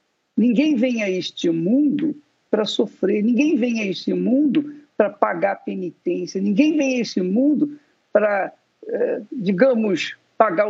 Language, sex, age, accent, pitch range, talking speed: Portuguese, male, 50-69, Brazilian, 230-300 Hz, 130 wpm